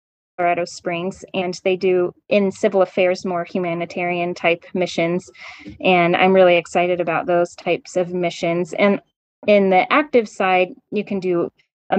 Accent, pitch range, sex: American, 175-205 Hz, female